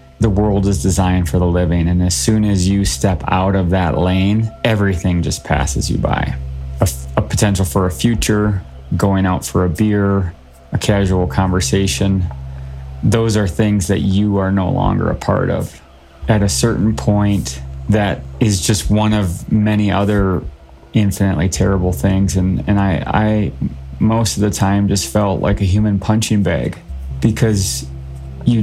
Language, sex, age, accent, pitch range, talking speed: English, male, 30-49, American, 90-105 Hz, 165 wpm